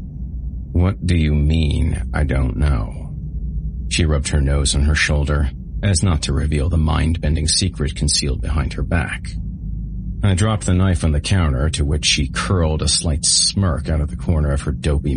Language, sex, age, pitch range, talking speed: English, male, 40-59, 75-100 Hz, 180 wpm